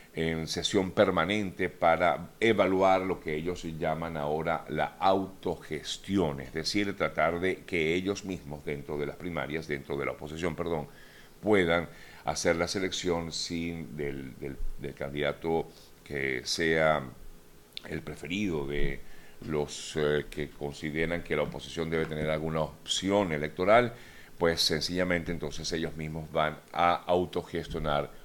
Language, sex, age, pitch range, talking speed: Spanish, male, 50-69, 75-85 Hz, 135 wpm